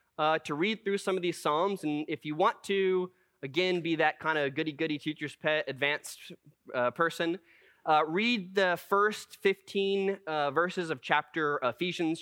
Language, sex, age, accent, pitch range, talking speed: English, male, 20-39, American, 140-190 Hz, 170 wpm